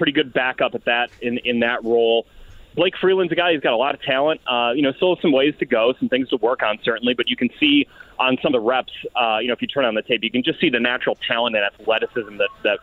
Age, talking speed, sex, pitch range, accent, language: 30-49, 295 wpm, male, 115-180 Hz, American, English